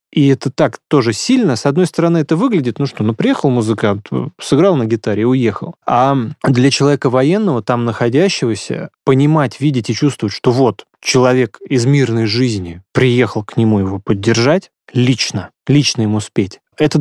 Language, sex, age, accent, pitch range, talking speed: Russian, male, 20-39, native, 110-145 Hz, 160 wpm